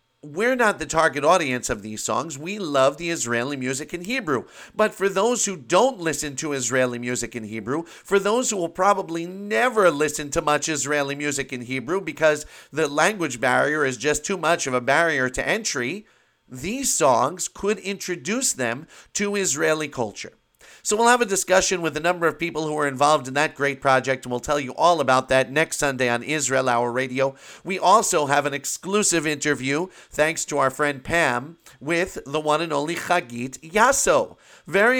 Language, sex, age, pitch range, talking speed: English, male, 40-59, 135-170 Hz, 185 wpm